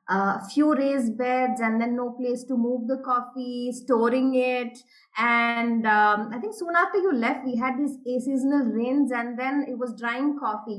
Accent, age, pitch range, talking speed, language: Indian, 20-39, 220-265 Hz, 185 wpm, English